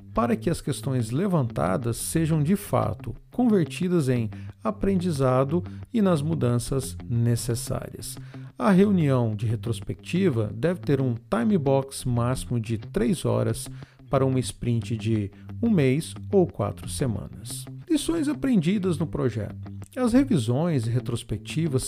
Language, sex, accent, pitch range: Portuguese, male, Brazilian, 120-175 Hz